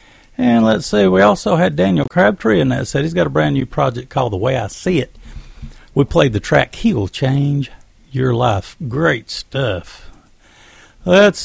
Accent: American